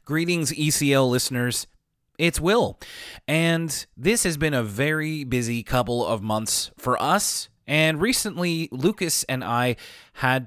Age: 30-49